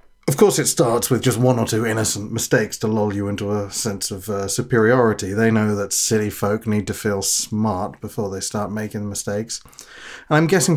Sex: male